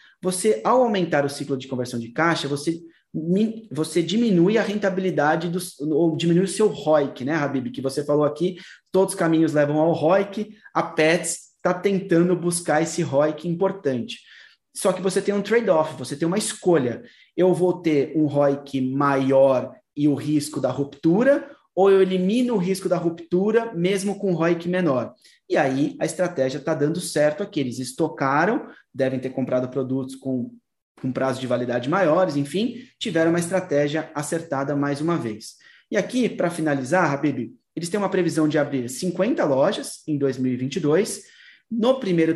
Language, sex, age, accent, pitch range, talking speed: Portuguese, male, 20-39, Brazilian, 140-180 Hz, 165 wpm